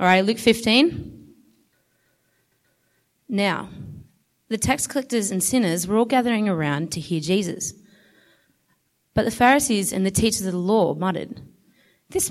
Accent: Australian